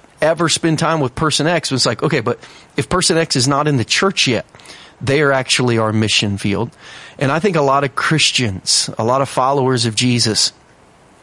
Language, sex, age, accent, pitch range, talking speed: English, male, 40-59, American, 115-155 Hz, 205 wpm